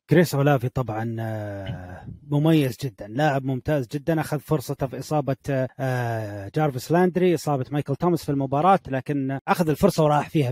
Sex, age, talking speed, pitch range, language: male, 30-49, 135 wpm, 130-165 Hz, Arabic